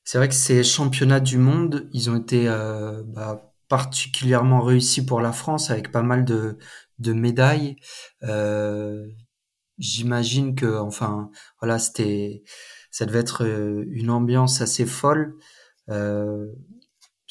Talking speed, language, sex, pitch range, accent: 130 wpm, French, male, 110-130 Hz, French